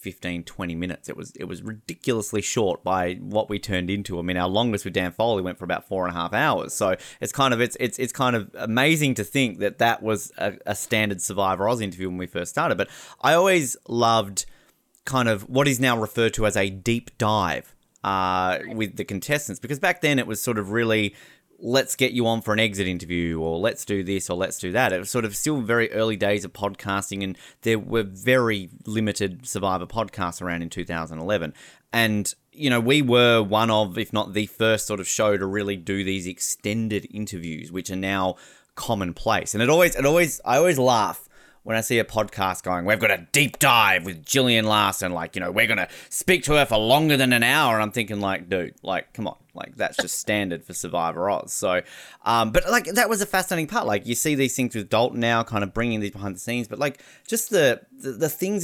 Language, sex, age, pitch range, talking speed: English, male, 20-39, 95-125 Hz, 230 wpm